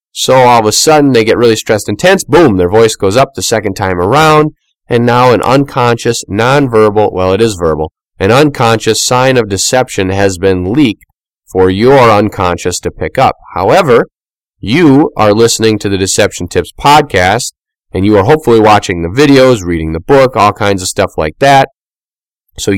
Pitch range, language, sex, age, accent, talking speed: 95-125 Hz, English, male, 30-49, American, 180 wpm